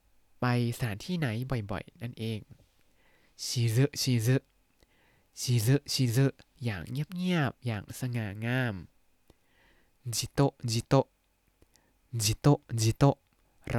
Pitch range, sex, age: 110-135 Hz, male, 20-39